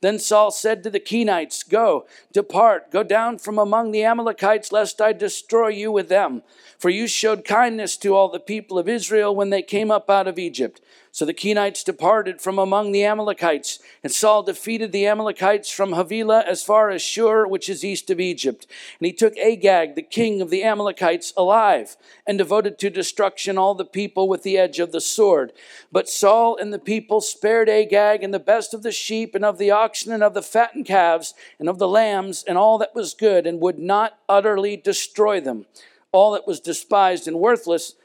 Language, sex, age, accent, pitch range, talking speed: English, male, 50-69, American, 175-215 Hz, 200 wpm